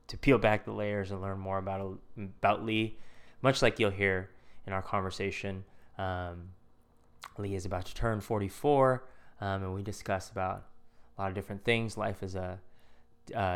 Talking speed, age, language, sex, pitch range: 175 wpm, 20-39, English, male, 95-110 Hz